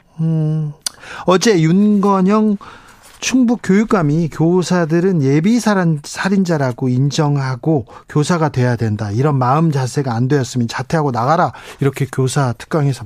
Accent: native